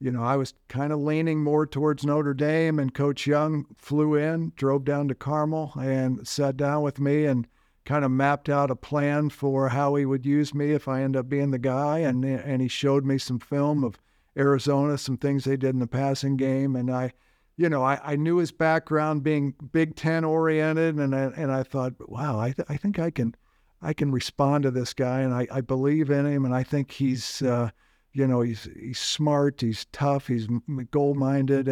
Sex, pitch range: male, 135-150 Hz